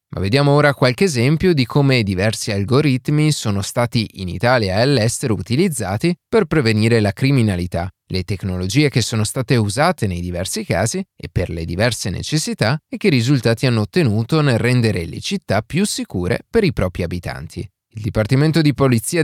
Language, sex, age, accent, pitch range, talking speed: Italian, male, 30-49, native, 105-145 Hz, 165 wpm